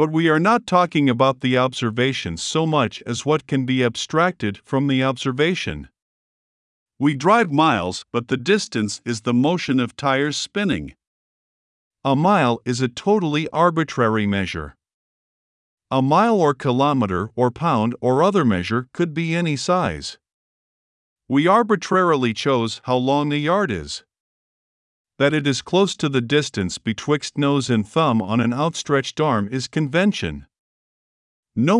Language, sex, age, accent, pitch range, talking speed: English, male, 50-69, American, 115-155 Hz, 145 wpm